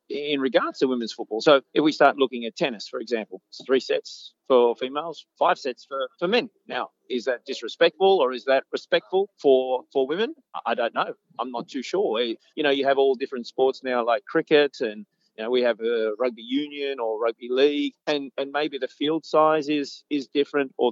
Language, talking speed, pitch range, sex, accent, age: English, 210 wpm, 125-200 Hz, male, Australian, 40-59